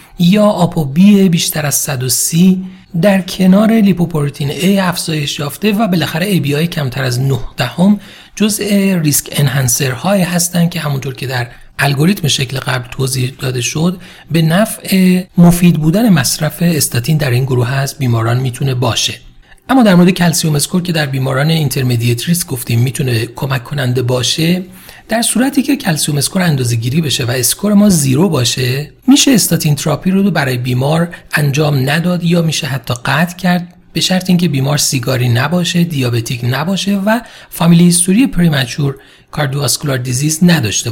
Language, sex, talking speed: Persian, male, 155 wpm